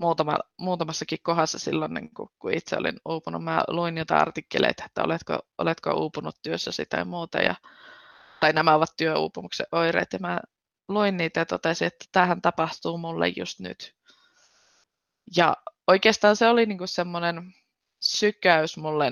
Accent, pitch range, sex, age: native, 155-180 Hz, female, 20-39